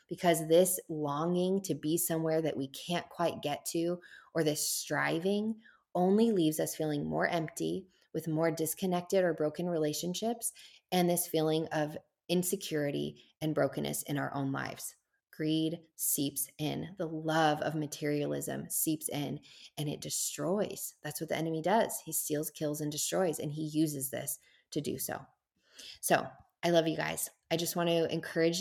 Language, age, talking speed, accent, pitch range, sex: English, 20-39, 160 wpm, American, 155-185 Hz, female